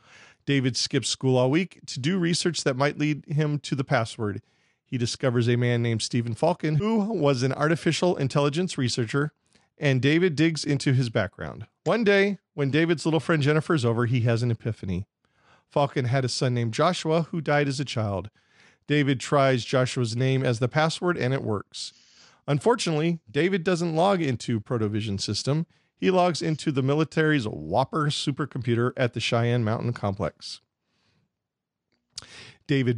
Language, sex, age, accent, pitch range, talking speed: English, male, 40-59, American, 120-155 Hz, 160 wpm